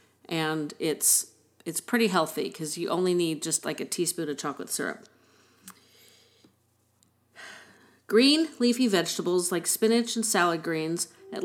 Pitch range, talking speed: 170-215 Hz, 130 wpm